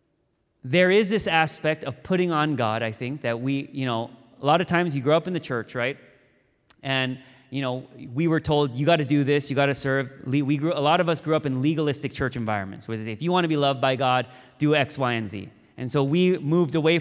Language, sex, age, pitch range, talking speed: English, male, 30-49, 135-175 Hz, 260 wpm